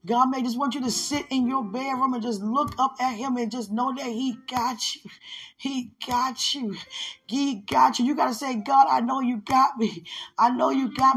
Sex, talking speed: female, 230 wpm